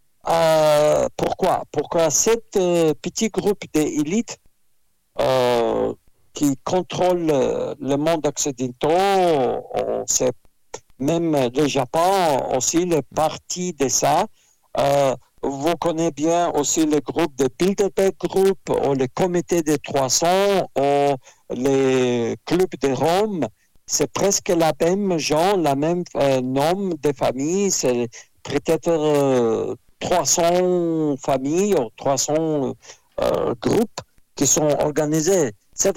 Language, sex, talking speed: French, male, 115 wpm